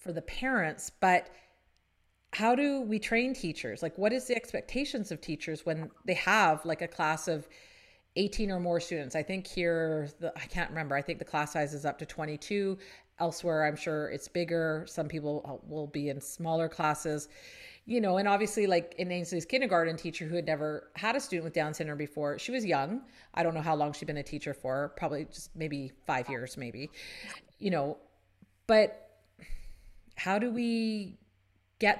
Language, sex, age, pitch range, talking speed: English, female, 30-49, 155-195 Hz, 190 wpm